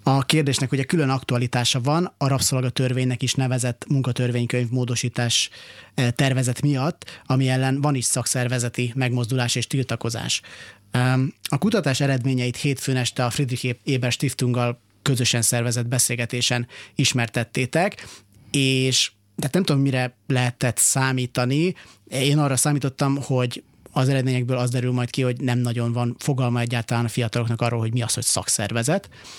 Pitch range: 120-135 Hz